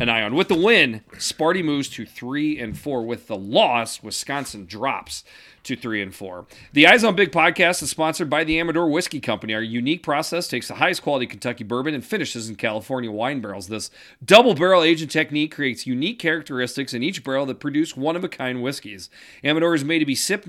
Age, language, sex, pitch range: 40-59, English, male, 115-165 Hz